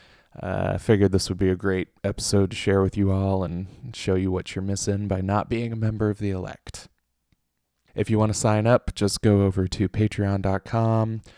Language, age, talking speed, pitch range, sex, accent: English, 20-39, 205 wpm, 95-110 Hz, male, American